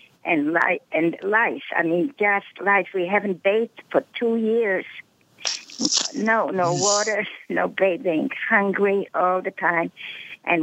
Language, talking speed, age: English, 125 wpm, 60-79